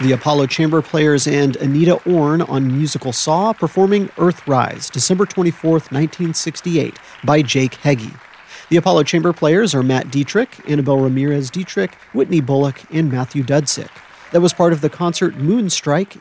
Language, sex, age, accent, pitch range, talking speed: English, male, 40-59, American, 135-175 Hz, 145 wpm